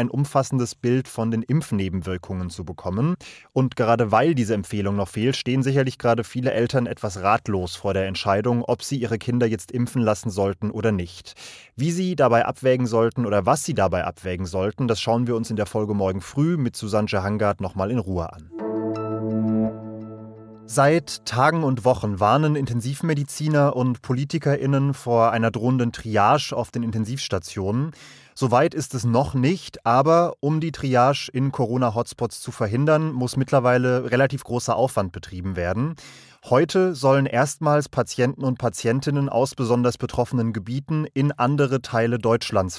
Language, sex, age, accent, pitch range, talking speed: German, male, 30-49, German, 110-135 Hz, 155 wpm